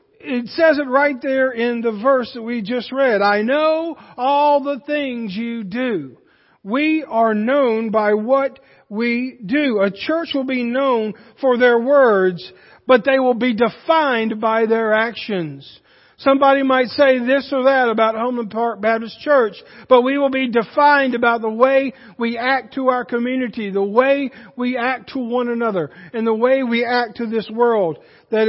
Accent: American